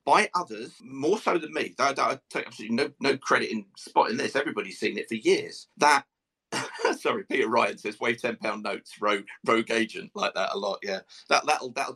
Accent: British